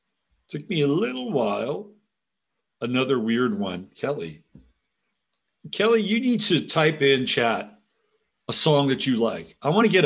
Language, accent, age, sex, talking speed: English, American, 50-69, male, 150 wpm